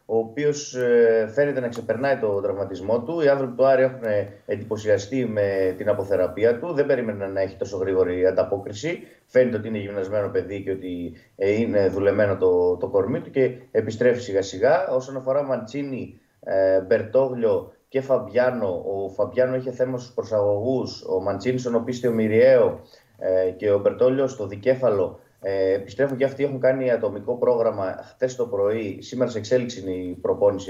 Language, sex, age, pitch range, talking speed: Greek, male, 20-39, 110-175 Hz, 160 wpm